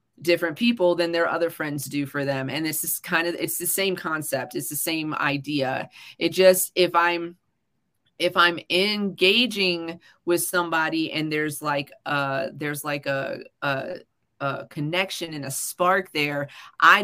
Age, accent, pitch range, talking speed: 30-49, American, 140-185 Hz, 160 wpm